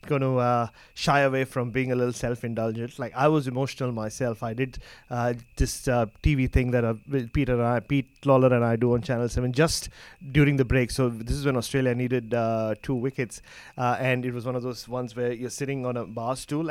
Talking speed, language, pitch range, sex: 230 wpm, English, 125-155 Hz, male